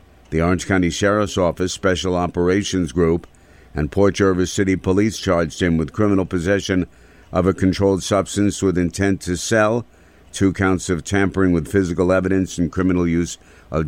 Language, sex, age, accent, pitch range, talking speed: English, male, 50-69, American, 85-95 Hz, 160 wpm